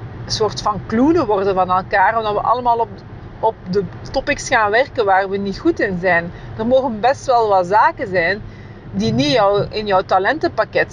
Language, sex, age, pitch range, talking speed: Dutch, female, 40-59, 170-250 Hz, 185 wpm